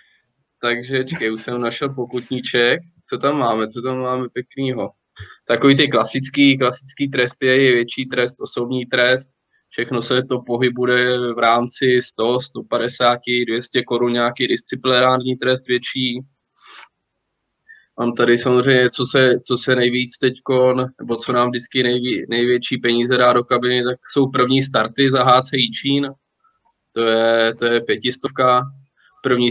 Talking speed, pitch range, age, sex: 145 wpm, 120-130 Hz, 20-39, male